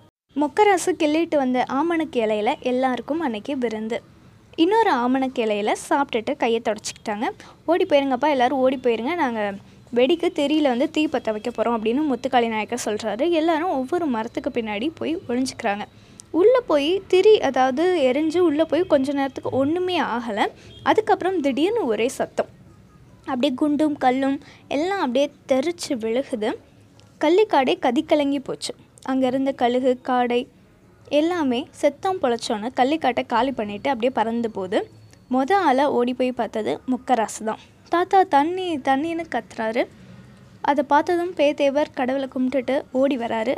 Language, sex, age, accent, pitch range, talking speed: Tamil, female, 20-39, native, 240-305 Hz, 125 wpm